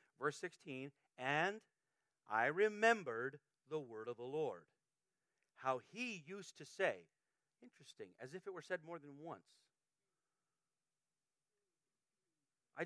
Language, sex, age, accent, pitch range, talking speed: English, male, 40-59, American, 135-180 Hz, 115 wpm